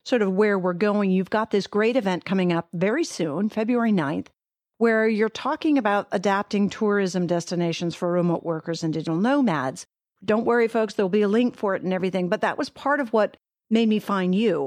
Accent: American